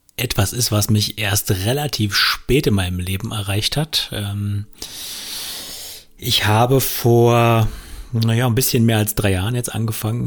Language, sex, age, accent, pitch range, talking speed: German, male, 30-49, German, 95-110 Hz, 135 wpm